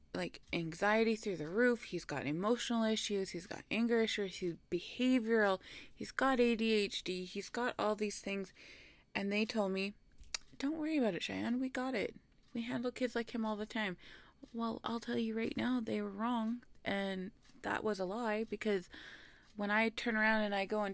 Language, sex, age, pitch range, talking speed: English, female, 20-39, 185-230 Hz, 190 wpm